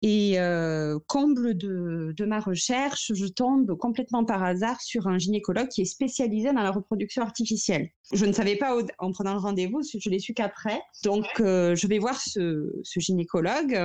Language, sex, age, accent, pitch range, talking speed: French, female, 30-49, French, 180-225 Hz, 190 wpm